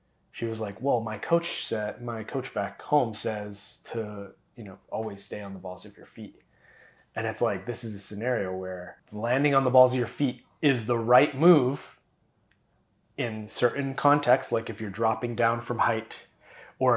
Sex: male